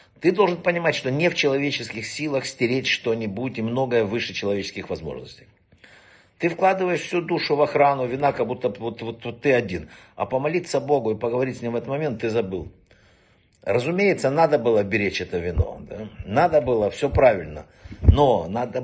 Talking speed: 170 wpm